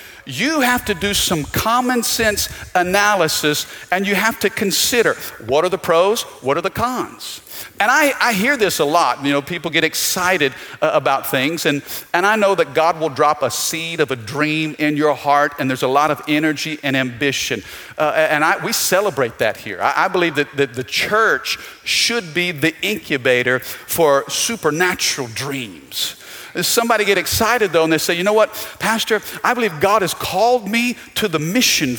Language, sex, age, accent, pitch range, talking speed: English, male, 50-69, American, 155-230 Hz, 190 wpm